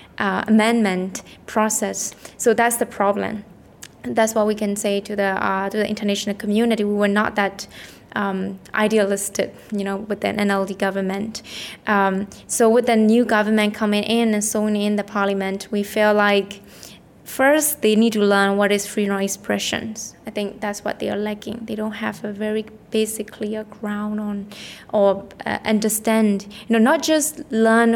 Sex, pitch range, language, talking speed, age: female, 200-220 Hz, English, 175 wpm, 20-39